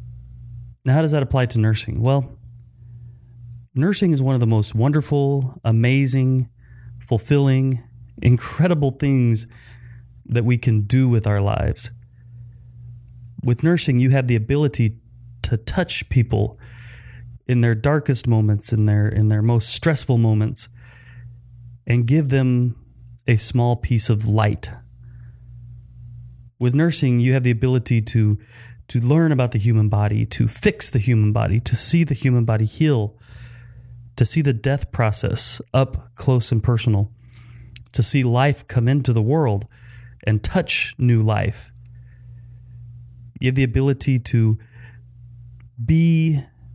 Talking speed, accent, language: 135 wpm, American, English